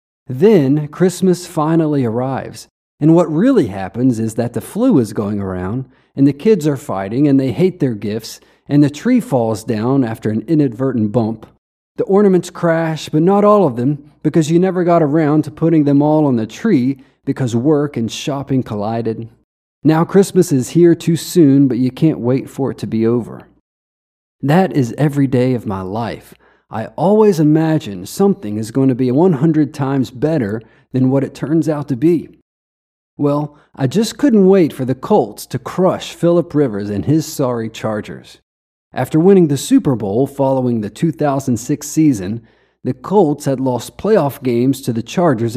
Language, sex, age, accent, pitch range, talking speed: English, male, 40-59, American, 115-160 Hz, 175 wpm